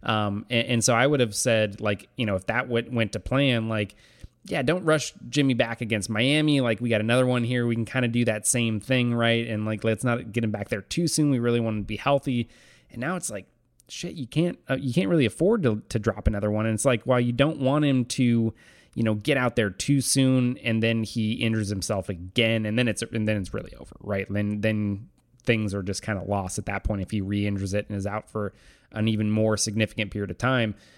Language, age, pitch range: English, 20-39, 110-125 Hz